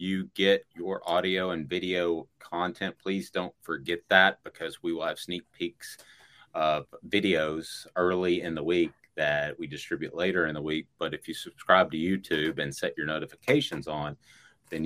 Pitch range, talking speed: 75-90 Hz, 170 wpm